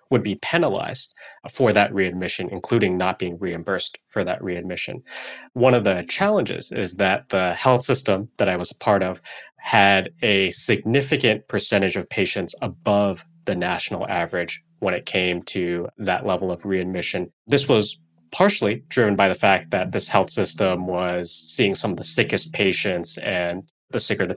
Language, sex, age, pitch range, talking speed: English, male, 20-39, 90-120 Hz, 165 wpm